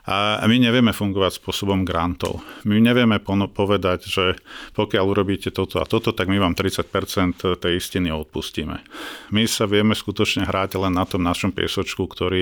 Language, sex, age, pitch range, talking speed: Slovak, male, 50-69, 90-100 Hz, 160 wpm